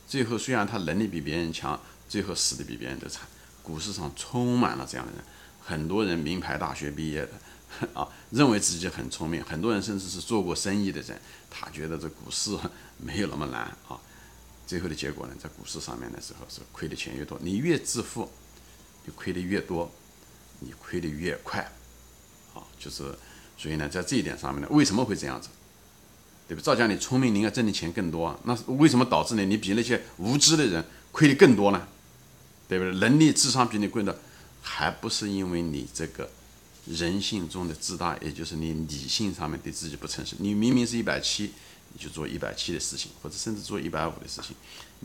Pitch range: 75-110 Hz